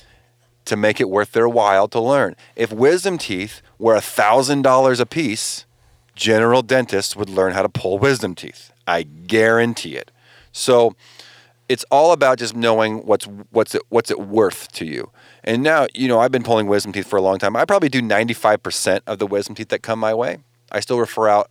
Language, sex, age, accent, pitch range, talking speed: English, male, 30-49, American, 105-125 Hz, 200 wpm